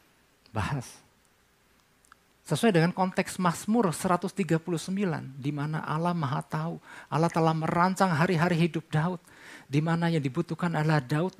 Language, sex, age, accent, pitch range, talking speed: Indonesian, male, 50-69, native, 160-210 Hz, 110 wpm